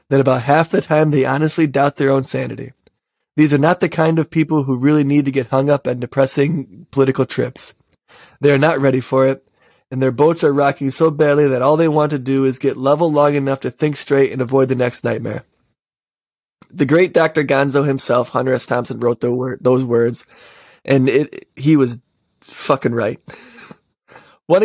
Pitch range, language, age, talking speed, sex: 130-150 Hz, English, 20-39, 190 wpm, male